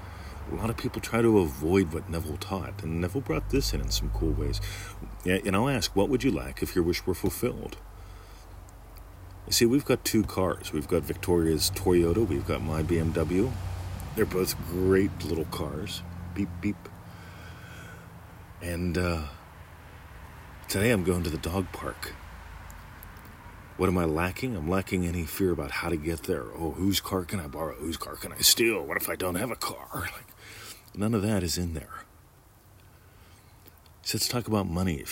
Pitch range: 85-105 Hz